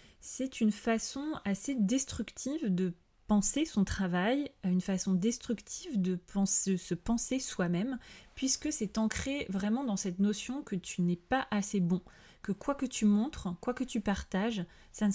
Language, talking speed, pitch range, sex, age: French, 160 wpm, 185-230 Hz, female, 30-49